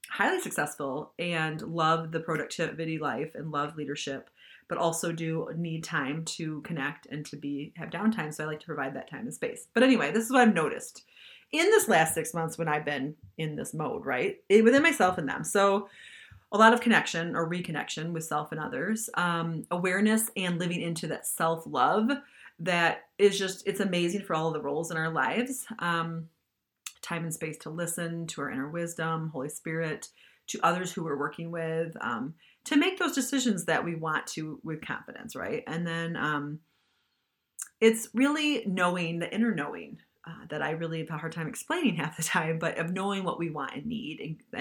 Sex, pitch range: female, 155-205 Hz